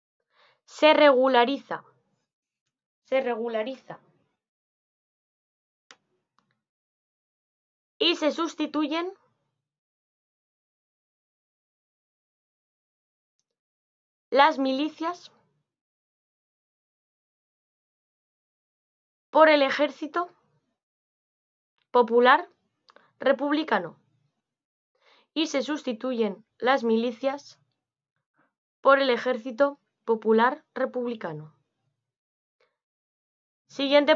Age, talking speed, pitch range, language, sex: 20-39, 45 wpm, 235-295 Hz, Spanish, female